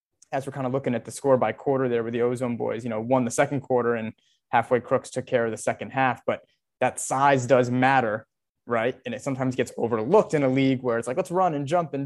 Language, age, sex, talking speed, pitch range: English, 20-39, male, 260 wpm, 120-135 Hz